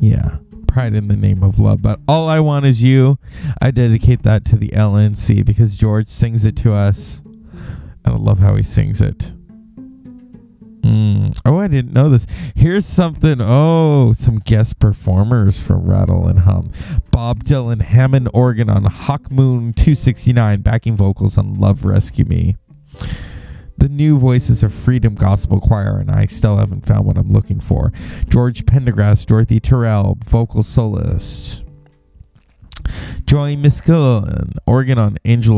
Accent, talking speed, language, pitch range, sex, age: American, 150 wpm, English, 100-125 Hz, male, 20-39